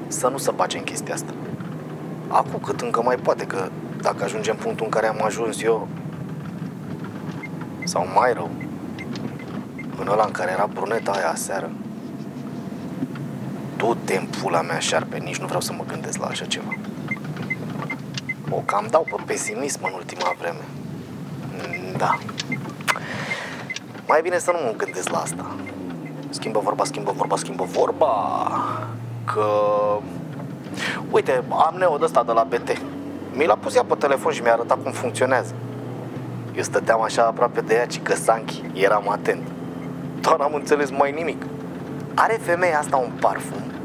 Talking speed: 150 wpm